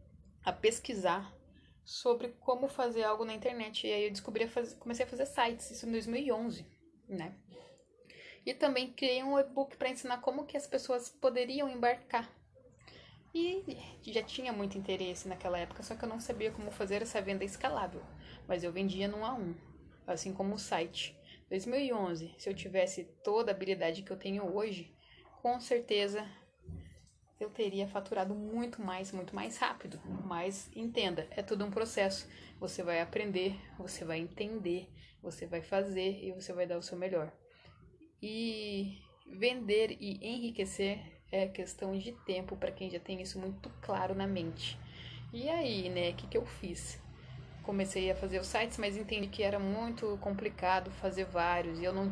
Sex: female